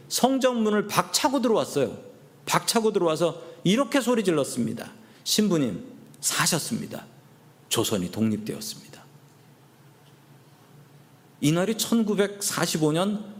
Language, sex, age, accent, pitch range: Korean, male, 40-59, native, 135-205 Hz